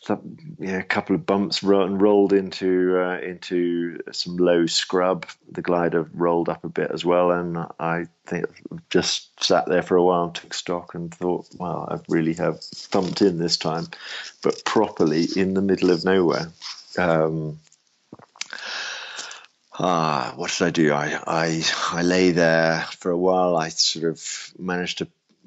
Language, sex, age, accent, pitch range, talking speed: English, male, 40-59, British, 80-90 Hz, 165 wpm